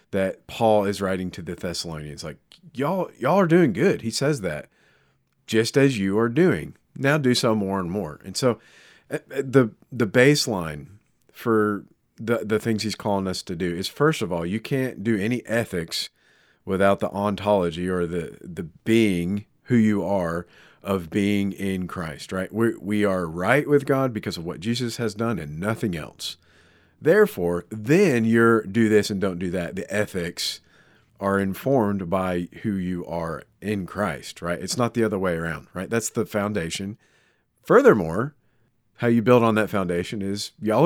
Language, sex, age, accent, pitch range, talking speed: English, male, 40-59, American, 90-120 Hz, 175 wpm